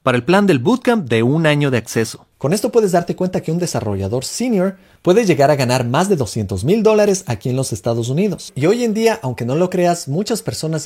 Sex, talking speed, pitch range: male, 240 wpm, 125-195 Hz